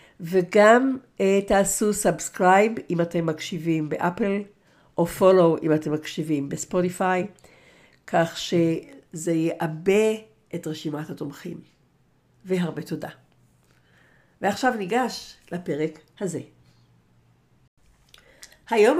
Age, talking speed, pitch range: 60-79, 80 wpm, 165-200 Hz